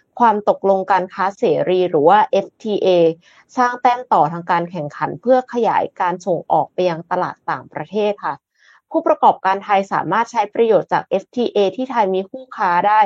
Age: 20-39